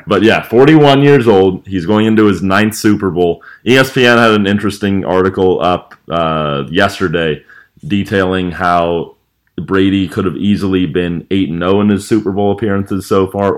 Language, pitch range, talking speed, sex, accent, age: English, 90-105 Hz, 165 wpm, male, American, 30-49